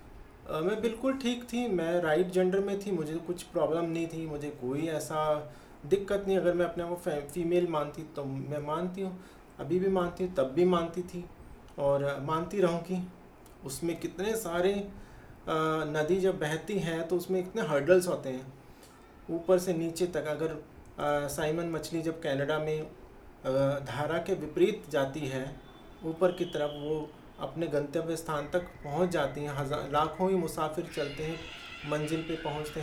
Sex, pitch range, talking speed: male, 145-180 Hz, 165 wpm